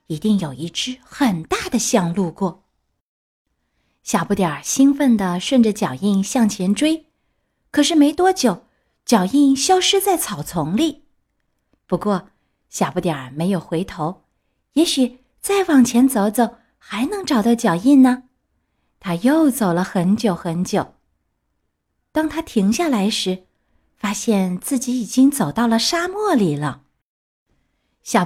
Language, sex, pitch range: Chinese, female, 190-260 Hz